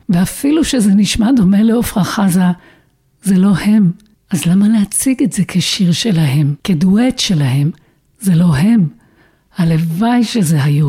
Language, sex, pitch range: Hebrew, female, 175-230 Hz